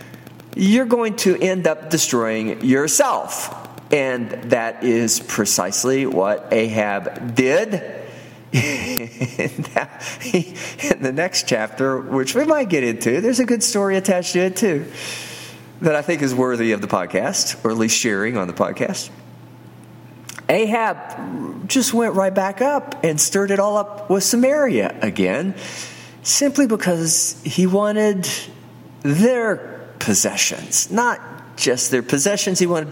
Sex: male